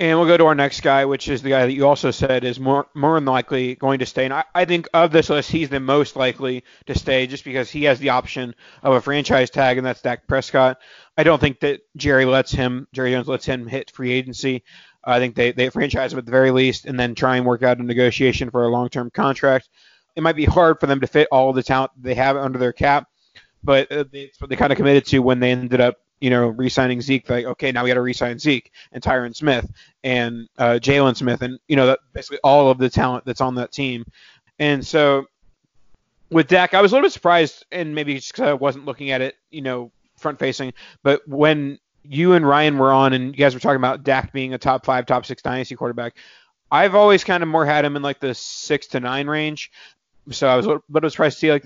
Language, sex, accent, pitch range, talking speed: English, male, American, 125-145 Hz, 250 wpm